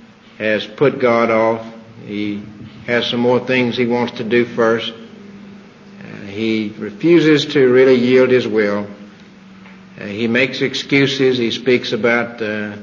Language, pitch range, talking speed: English, 110-125 Hz, 140 wpm